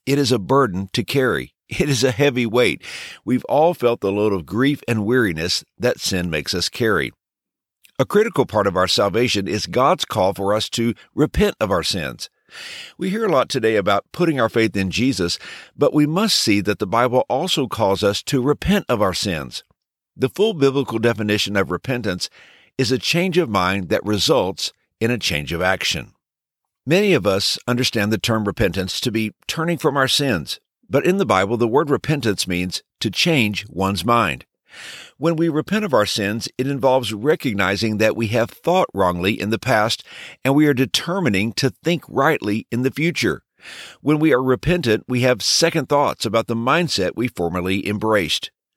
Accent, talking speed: American, 185 wpm